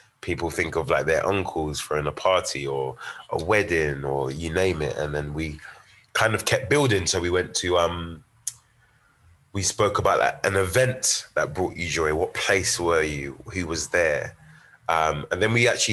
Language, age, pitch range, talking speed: English, 20-39, 75-105 Hz, 190 wpm